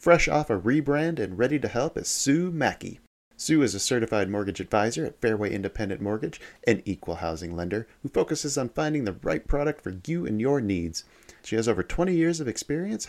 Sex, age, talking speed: male, 30-49, 200 wpm